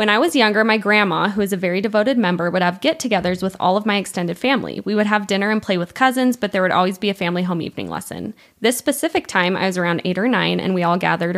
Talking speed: 275 wpm